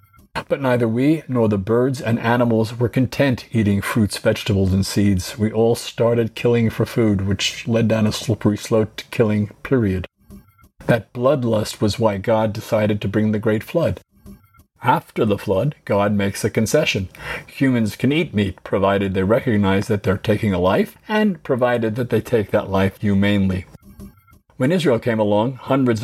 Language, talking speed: English, 170 wpm